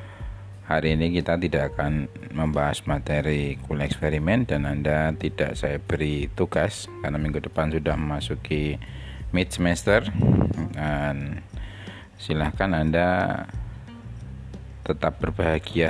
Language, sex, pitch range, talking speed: Indonesian, male, 75-95 Hz, 105 wpm